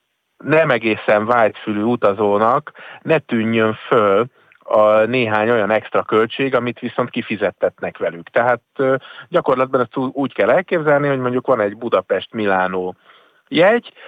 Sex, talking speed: male, 115 wpm